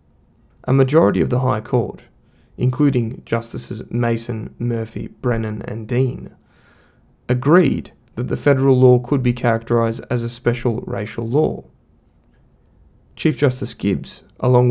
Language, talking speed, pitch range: English, 120 wpm, 115-135 Hz